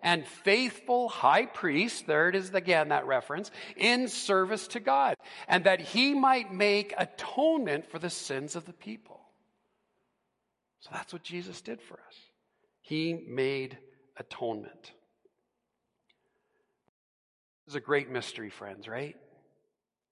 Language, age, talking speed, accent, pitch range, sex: English, 50-69, 130 wpm, American, 155-245 Hz, male